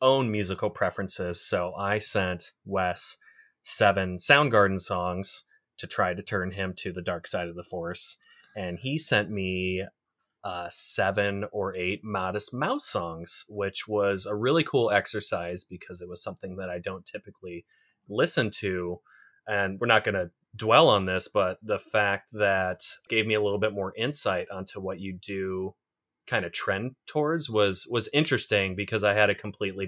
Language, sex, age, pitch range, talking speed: English, male, 30-49, 95-115 Hz, 170 wpm